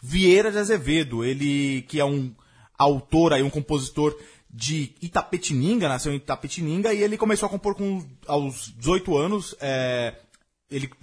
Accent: Brazilian